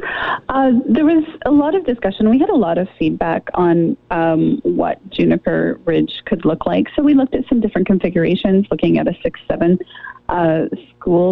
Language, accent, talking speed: English, American, 180 wpm